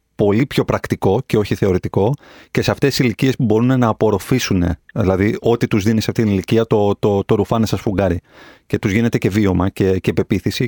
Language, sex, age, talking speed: Greek, male, 30-49, 210 wpm